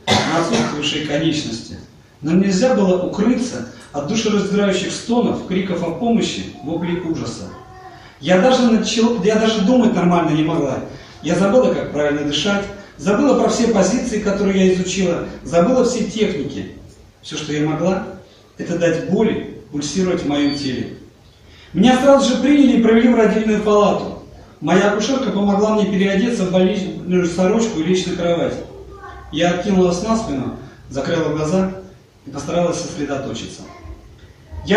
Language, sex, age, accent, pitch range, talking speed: Russian, male, 40-59, native, 165-220 Hz, 140 wpm